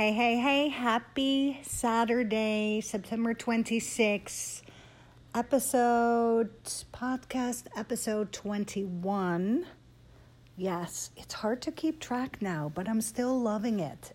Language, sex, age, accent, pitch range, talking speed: English, female, 50-69, American, 185-225 Hz, 100 wpm